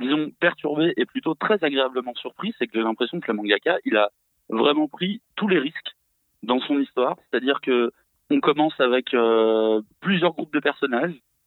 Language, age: French, 30-49